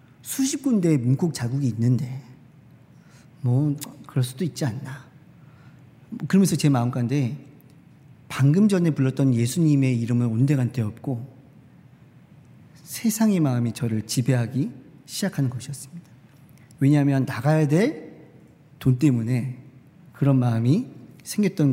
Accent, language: native, Korean